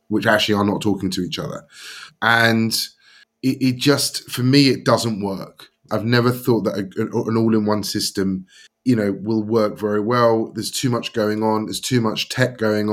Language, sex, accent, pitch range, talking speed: English, male, British, 105-125 Hz, 195 wpm